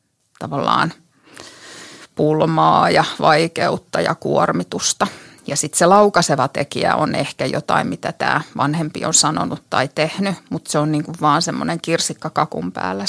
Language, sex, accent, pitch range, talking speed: Finnish, female, native, 145-170 Hz, 135 wpm